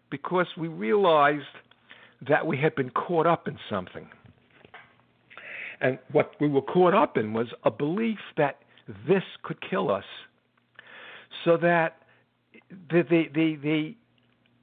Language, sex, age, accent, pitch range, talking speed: English, male, 60-79, American, 125-185 Hz, 115 wpm